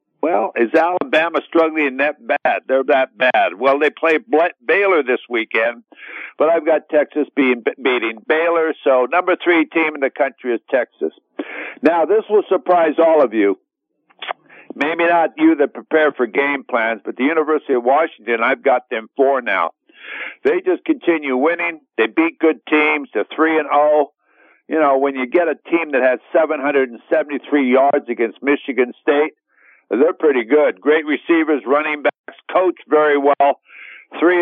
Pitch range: 135-180 Hz